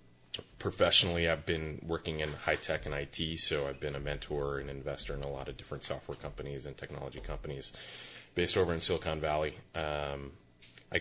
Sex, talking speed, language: male, 175 wpm, English